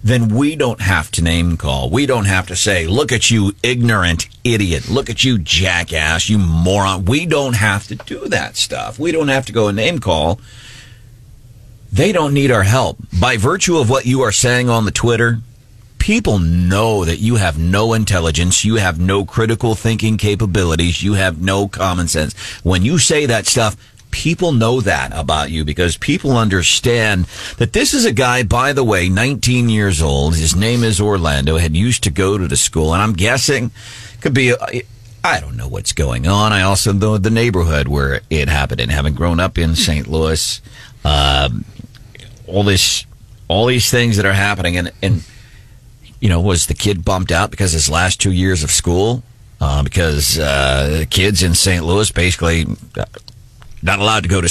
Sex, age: male, 40-59